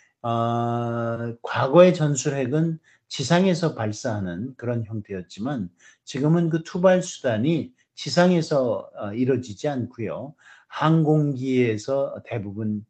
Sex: male